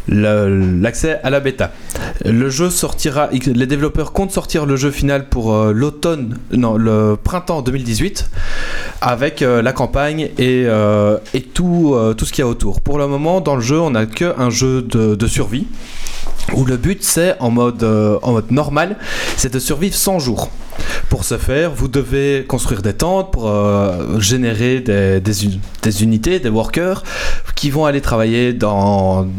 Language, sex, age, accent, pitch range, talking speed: French, male, 20-39, French, 110-145 Hz, 180 wpm